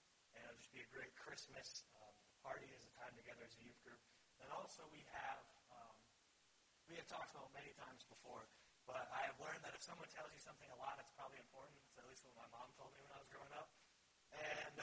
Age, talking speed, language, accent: 40-59, 220 wpm, English, American